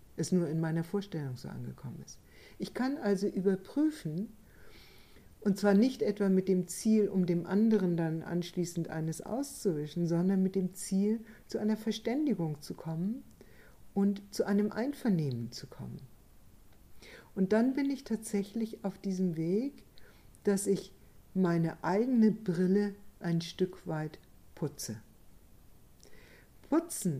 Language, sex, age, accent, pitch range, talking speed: German, female, 60-79, German, 160-205 Hz, 130 wpm